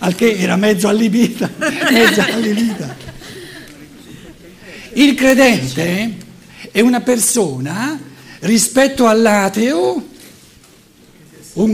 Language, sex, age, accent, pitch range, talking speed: Italian, male, 60-79, native, 185-255 Hz, 75 wpm